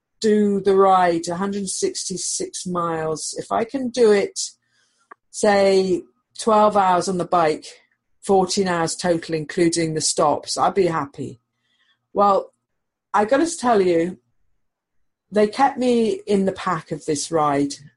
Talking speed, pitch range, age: 130 wpm, 160-210 Hz, 40-59